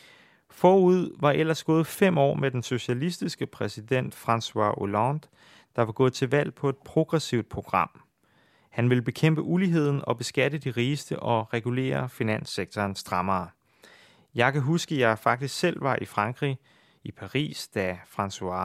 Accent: native